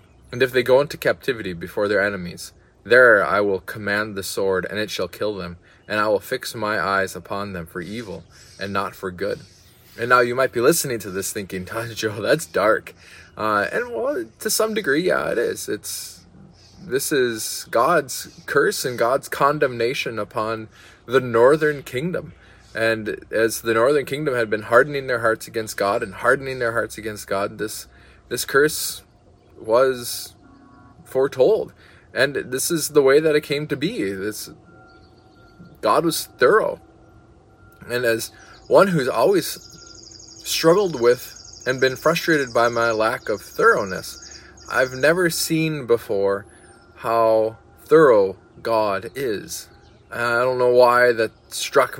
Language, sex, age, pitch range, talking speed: English, male, 20-39, 100-125 Hz, 155 wpm